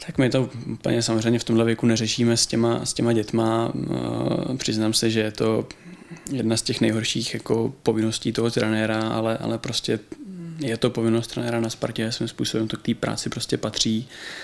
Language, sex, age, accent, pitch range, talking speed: Czech, male, 20-39, native, 110-115 Hz, 185 wpm